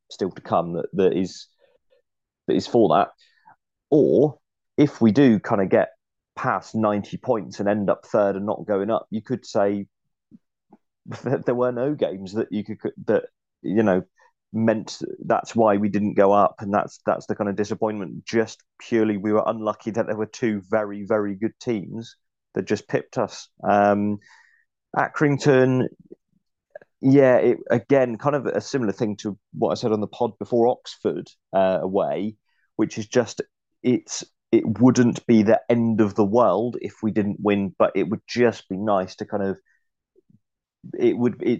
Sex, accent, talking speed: male, British, 175 wpm